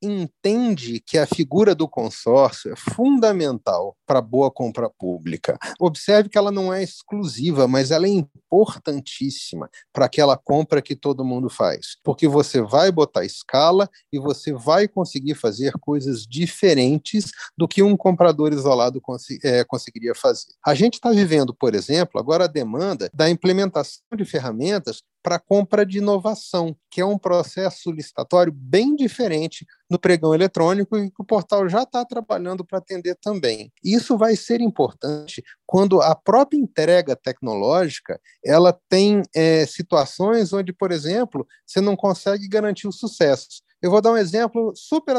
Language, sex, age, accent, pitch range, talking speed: Portuguese, male, 40-59, Brazilian, 150-205 Hz, 150 wpm